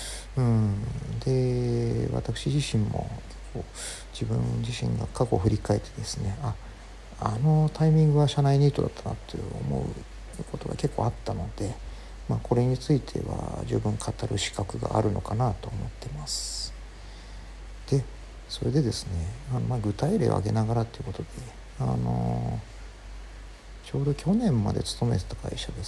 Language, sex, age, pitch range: Japanese, male, 50-69, 100-125 Hz